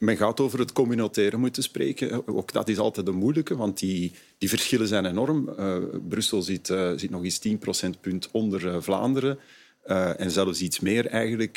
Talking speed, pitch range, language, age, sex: 190 wpm, 95-130 Hz, Dutch, 40-59, male